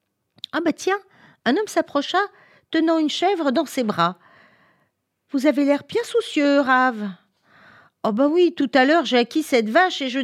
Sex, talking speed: female, 175 wpm